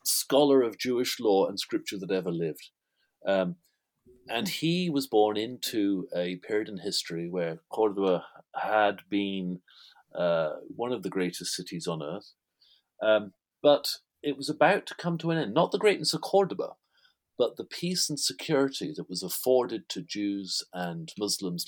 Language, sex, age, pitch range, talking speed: English, male, 40-59, 90-145 Hz, 160 wpm